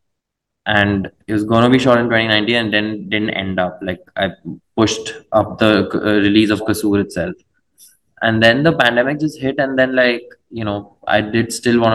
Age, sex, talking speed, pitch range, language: 20-39, male, 185 wpm, 100-115 Hz, Arabic